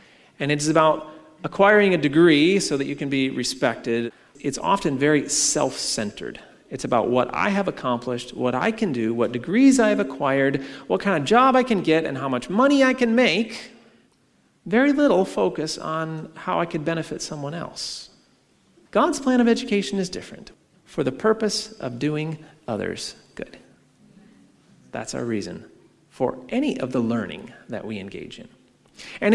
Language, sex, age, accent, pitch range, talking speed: English, male, 40-59, American, 145-220 Hz, 165 wpm